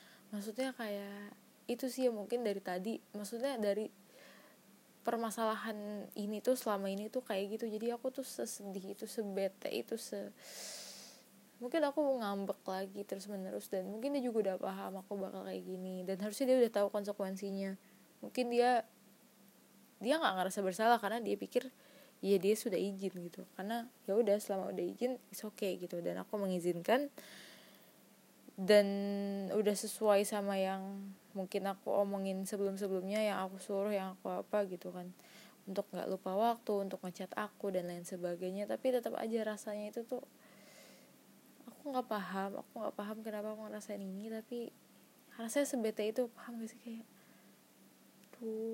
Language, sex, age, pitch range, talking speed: Indonesian, female, 20-39, 195-235 Hz, 155 wpm